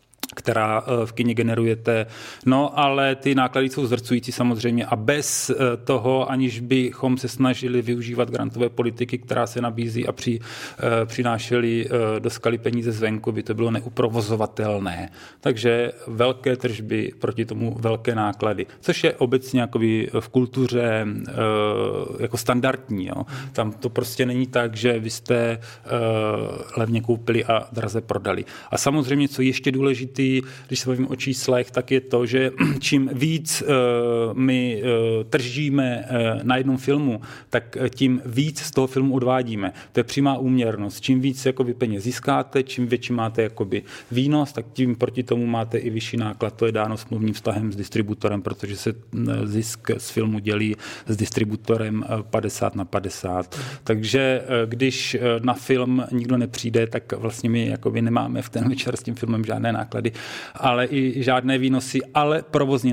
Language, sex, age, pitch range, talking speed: Czech, male, 40-59, 115-130 Hz, 155 wpm